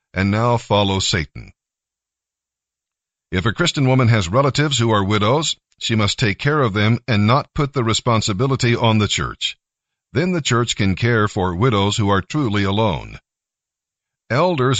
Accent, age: American, 50-69